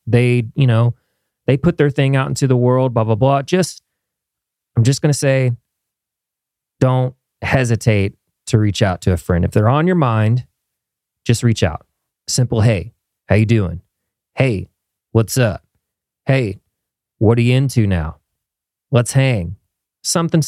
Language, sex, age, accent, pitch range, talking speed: English, male, 30-49, American, 100-130 Hz, 150 wpm